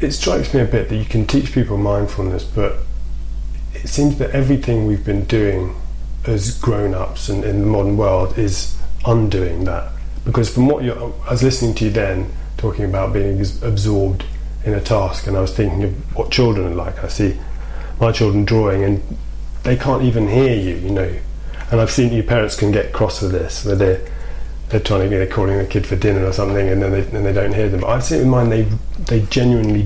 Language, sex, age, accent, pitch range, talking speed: English, male, 30-49, British, 95-110 Hz, 220 wpm